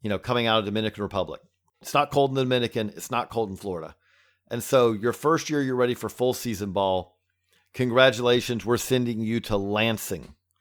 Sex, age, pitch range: male, 40-59, 110-130 Hz